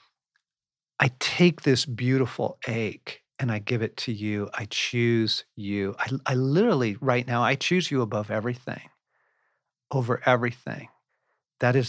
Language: English